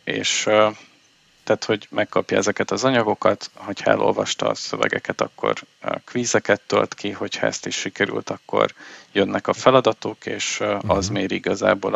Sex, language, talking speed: male, Hungarian, 140 wpm